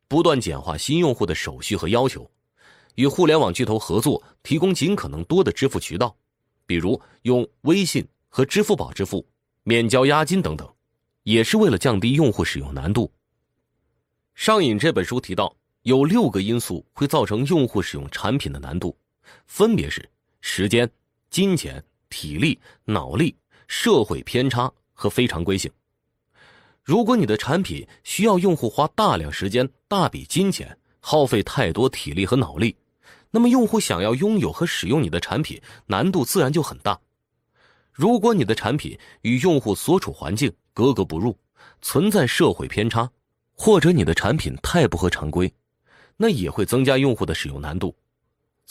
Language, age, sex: Chinese, 30-49, male